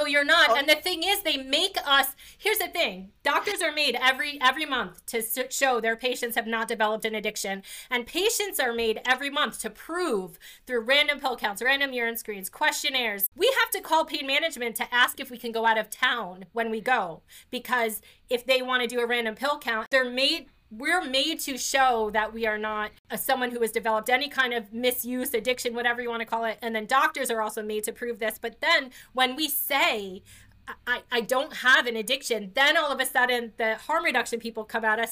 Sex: female